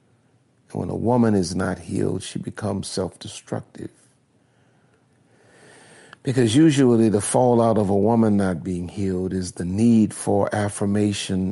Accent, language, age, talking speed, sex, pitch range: American, English, 50-69, 125 wpm, male, 95-120 Hz